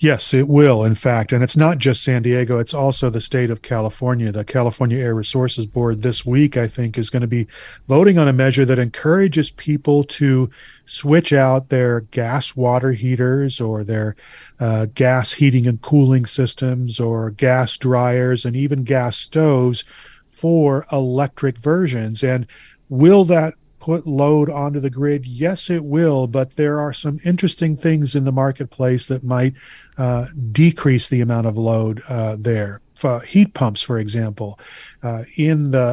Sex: male